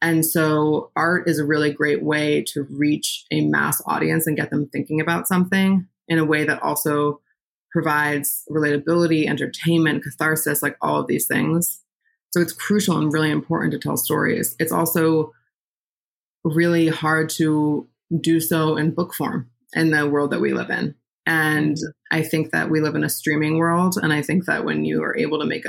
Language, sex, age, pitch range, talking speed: English, female, 20-39, 145-160 Hz, 185 wpm